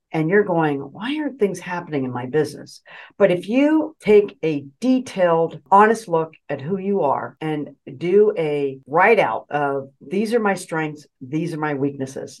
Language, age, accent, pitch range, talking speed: English, 50-69, American, 155-220 Hz, 175 wpm